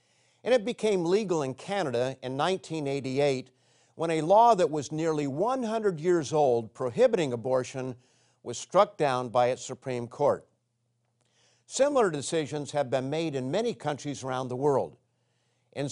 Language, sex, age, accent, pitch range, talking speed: English, male, 50-69, American, 125-175 Hz, 145 wpm